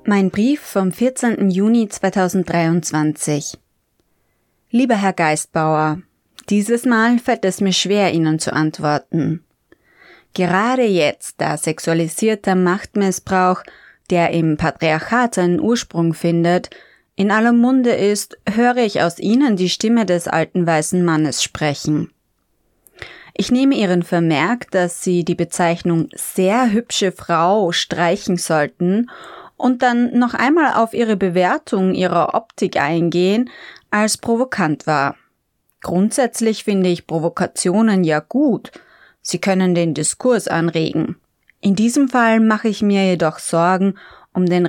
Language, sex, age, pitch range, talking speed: German, female, 20-39, 170-220 Hz, 120 wpm